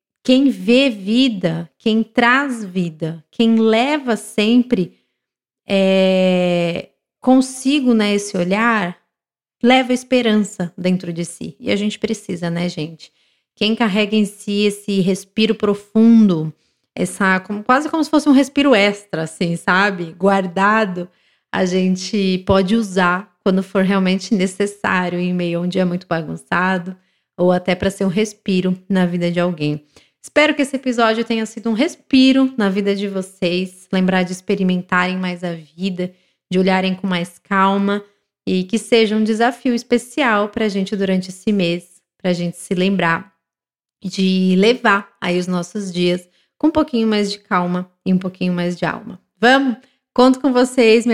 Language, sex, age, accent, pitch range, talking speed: Portuguese, female, 20-39, Brazilian, 180-225 Hz, 155 wpm